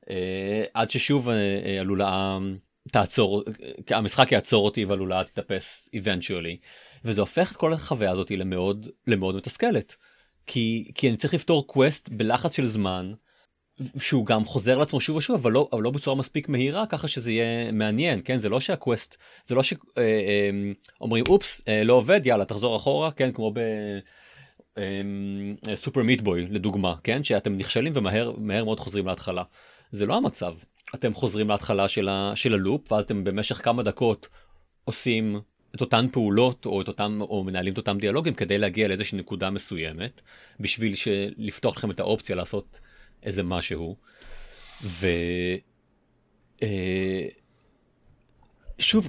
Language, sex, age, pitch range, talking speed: Hebrew, male, 30-49, 100-125 Hz, 135 wpm